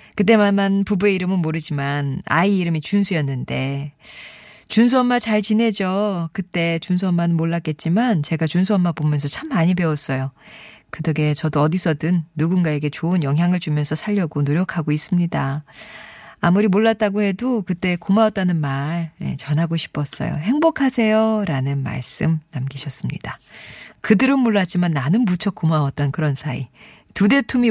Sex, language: female, Korean